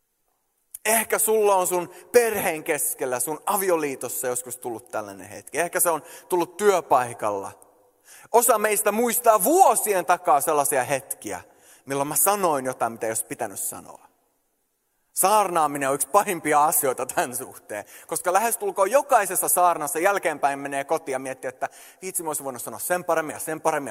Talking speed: 145 wpm